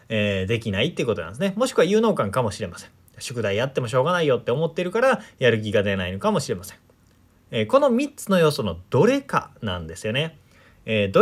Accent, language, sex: native, Japanese, male